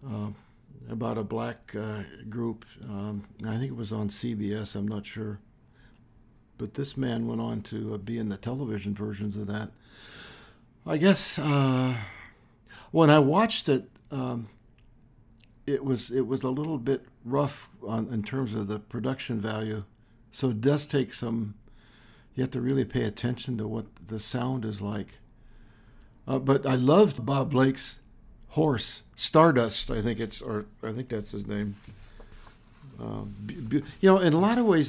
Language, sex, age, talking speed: English, male, 60-79, 165 wpm